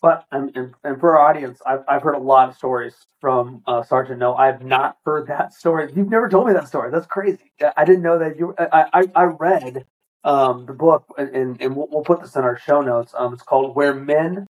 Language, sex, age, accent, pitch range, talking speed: English, male, 40-59, American, 125-160 Hz, 235 wpm